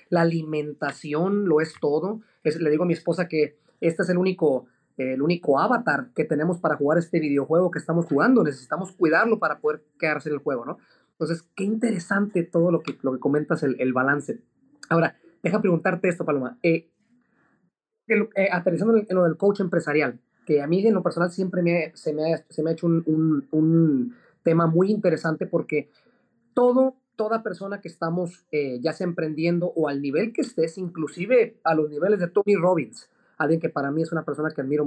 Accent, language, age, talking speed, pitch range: Mexican, Spanish, 30-49, 205 wpm, 150-195 Hz